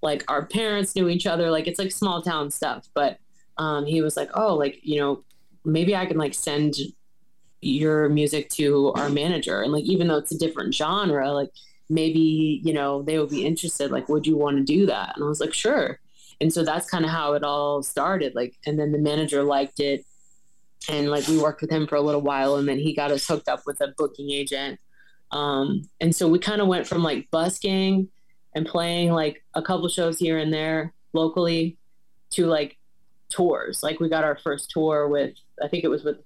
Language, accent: English, American